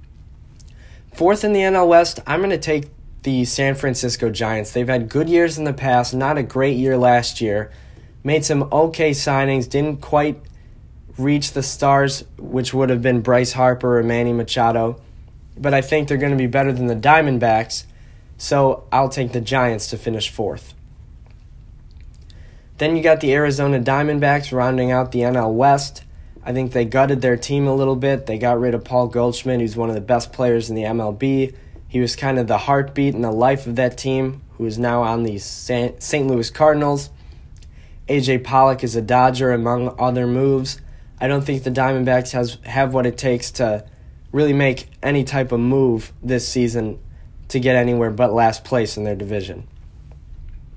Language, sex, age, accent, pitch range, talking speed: English, male, 20-39, American, 115-135 Hz, 180 wpm